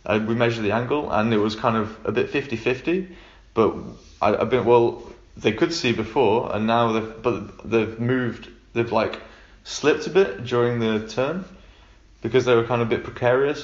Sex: male